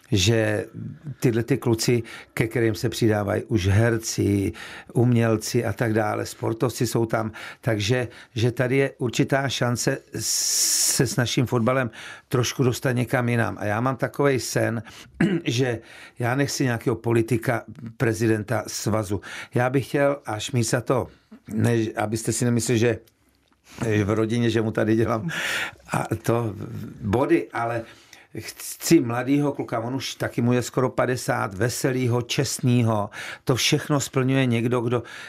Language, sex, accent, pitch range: Czech, male, native, 115-130 Hz